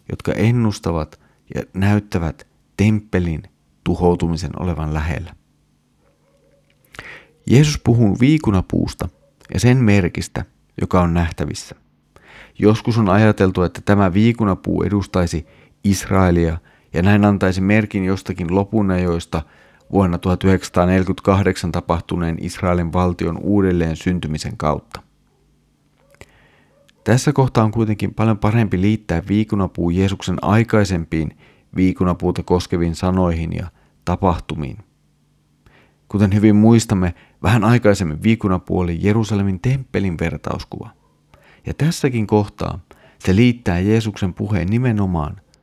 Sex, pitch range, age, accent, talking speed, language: male, 85-105 Hz, 40-59, native, 95 wpm, Finnish